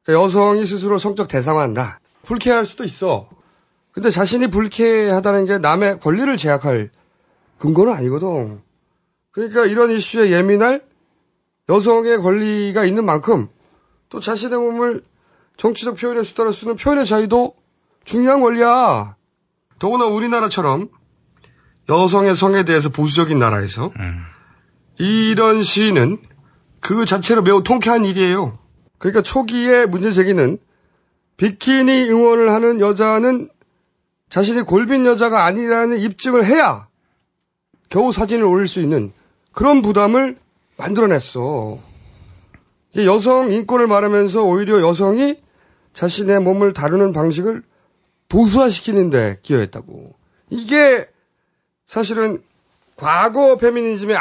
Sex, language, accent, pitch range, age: male, Korean, native, 175-235 Hz, 30-49